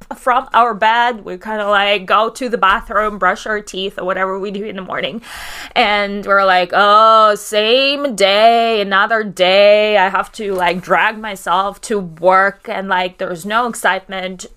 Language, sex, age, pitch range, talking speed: English, female, 20-39, 200-275 Hz, 175 wpm